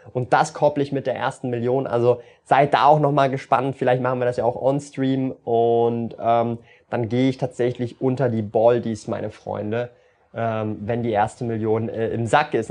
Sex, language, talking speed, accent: male, German, 195 wpm, German